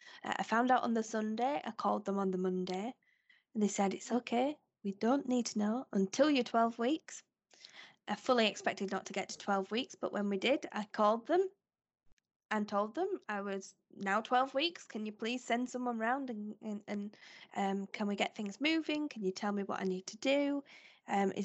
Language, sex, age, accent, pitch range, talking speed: English, female, 10-29, British, 195-240 Hz, 215 wpm